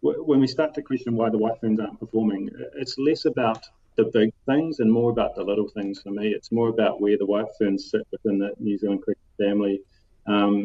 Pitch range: 100-115 Hz